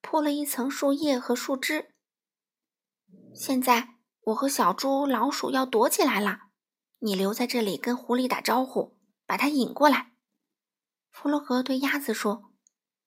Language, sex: Chinese, female